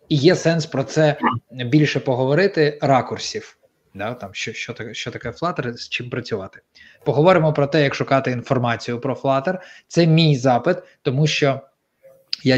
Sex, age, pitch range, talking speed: male, 20-39, 115-150 Hz, 155 wpm